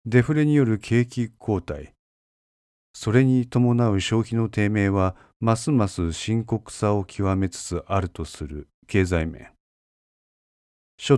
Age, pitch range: 40-59, 85-115 Hz